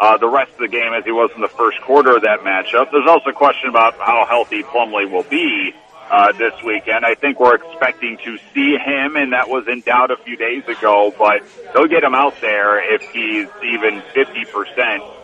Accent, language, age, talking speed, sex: American, English, 40-59, 215 wpm, male